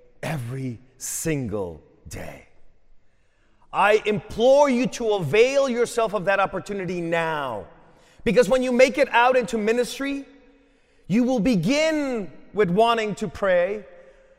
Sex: male